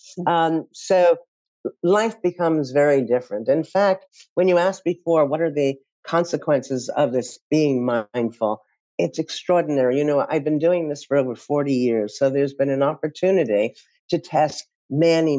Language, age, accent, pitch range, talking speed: English, 50-69, American, 135-175 Hz, 155 wpm